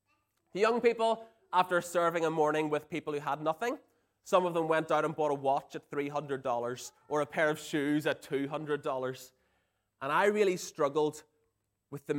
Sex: male